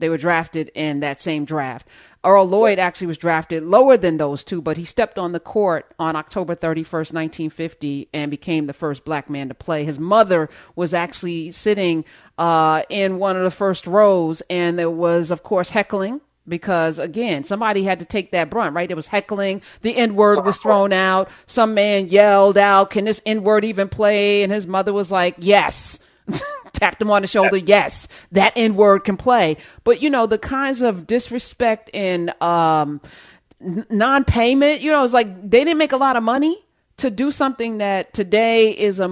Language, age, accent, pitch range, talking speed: English, 40-59, American, 170-220 Hz, 185 wpm